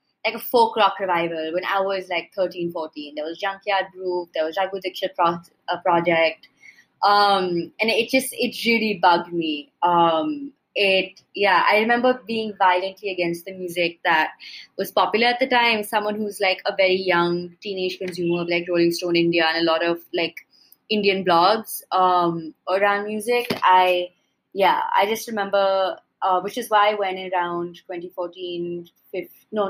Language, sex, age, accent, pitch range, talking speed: English, female, 20-39, Indian, 175-210 Hz, 160 wpm